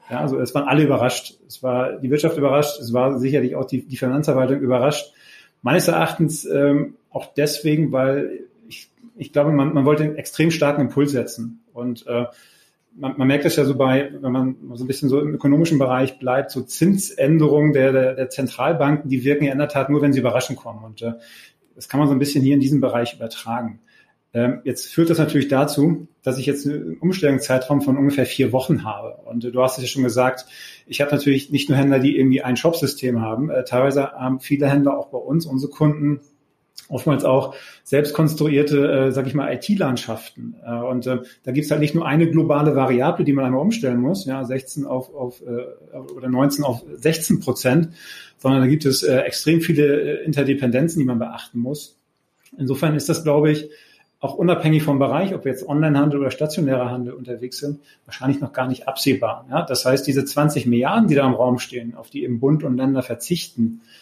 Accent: German